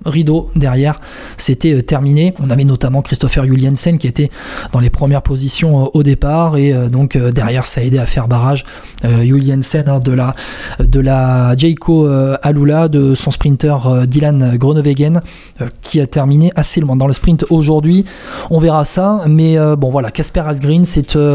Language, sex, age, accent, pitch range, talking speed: French, male, 20-39, French, 140-165 Hz, 175 wpm